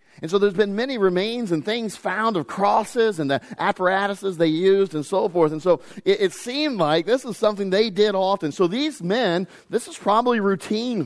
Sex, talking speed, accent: male, 205 wpm, American